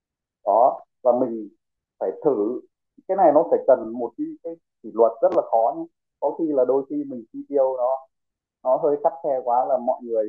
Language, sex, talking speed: Vietnamese, male, 205 wpm